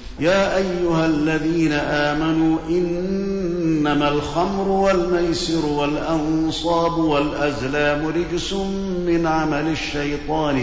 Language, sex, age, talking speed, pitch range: Arabic, male, 50-69, 75 wpm, 145-165 Hz